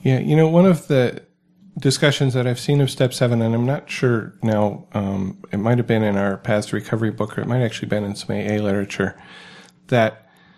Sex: male